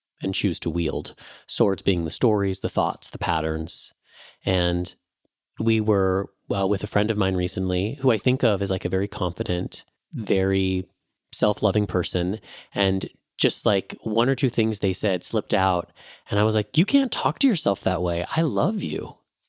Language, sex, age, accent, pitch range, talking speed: English, male, 30-49, American, 95-125 Hz, 180 wpm